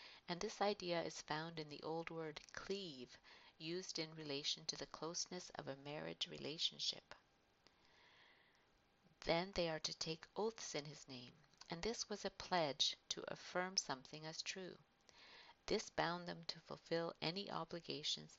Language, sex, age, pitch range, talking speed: English, female, 50-69, 150-190 Hz, 150 wpm